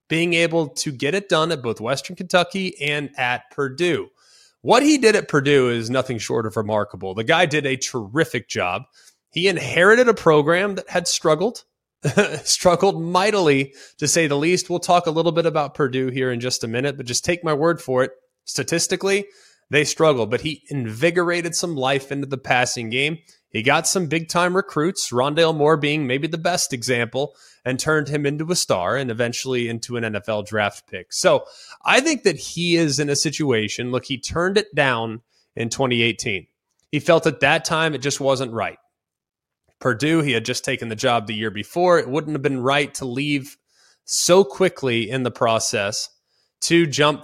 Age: 20-39